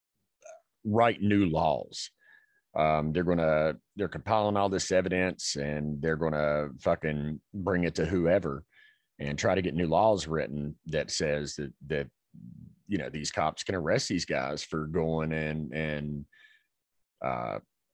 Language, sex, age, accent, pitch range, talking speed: English, male, 40-59, American, 75-100 Hz, 145 wpm